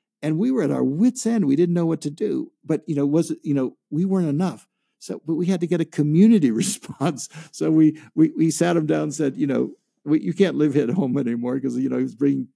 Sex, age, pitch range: male, 60-79, 135-185 Hz